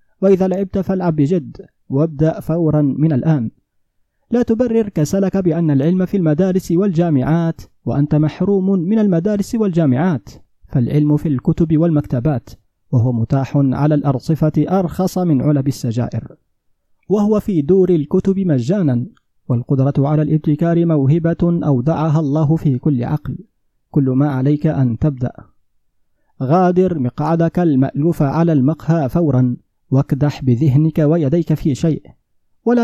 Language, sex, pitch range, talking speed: Arabic, male, 135-170 Hz, 115 wpm